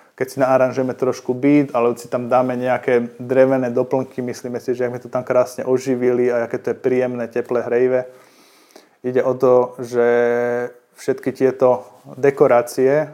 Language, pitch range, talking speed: Slovak, 120-130 Hz, 155 wpm